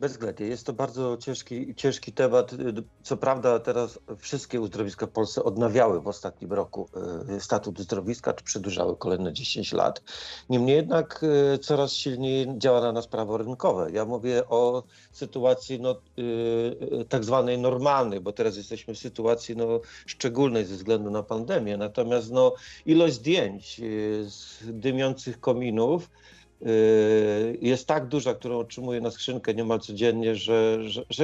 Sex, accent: male, native